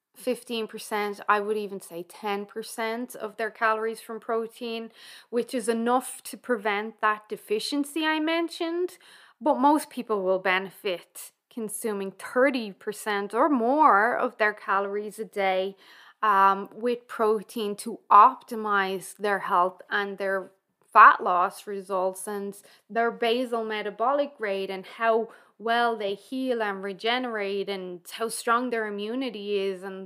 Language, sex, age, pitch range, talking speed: English, female, 20-39, 205-250 Hz, 130 wpm